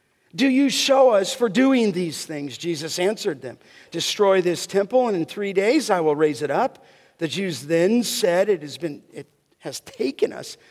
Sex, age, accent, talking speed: male, 50-69, American, 190 wpm